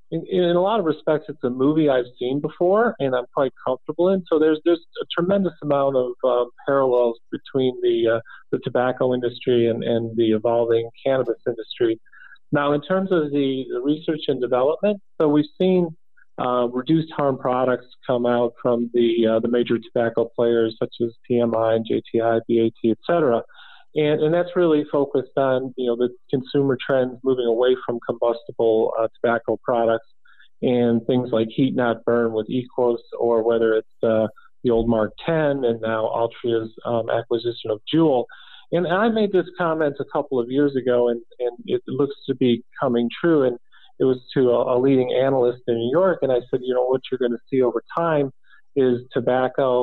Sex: male